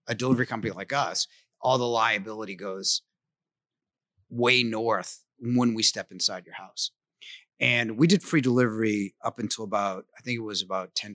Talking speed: 165 wpm